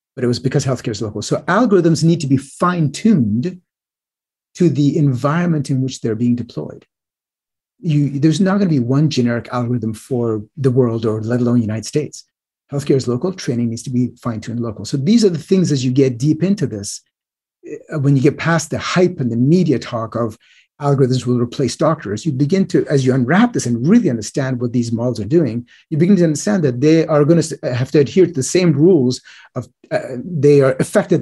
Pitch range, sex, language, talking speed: 120-165 Hz, male, English, 210 wpm